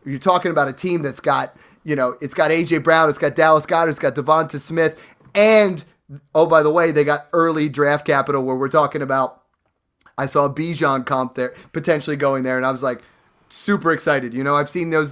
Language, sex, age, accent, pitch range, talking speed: English, male, 30-49, American, 140-165 Hz, 215 wpm